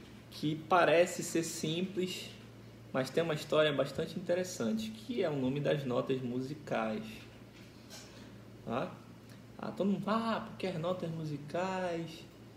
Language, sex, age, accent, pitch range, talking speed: Portuguese, male, 20-39, Brazilian, 115-170 Hz, 120 wpm